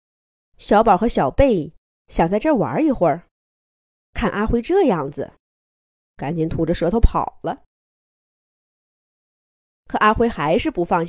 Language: Chinese